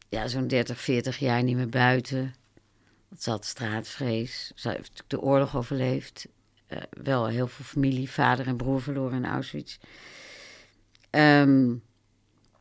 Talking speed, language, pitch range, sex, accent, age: 140 wpm, Dutch, 115-150 Hz, female, Dutch, 60-79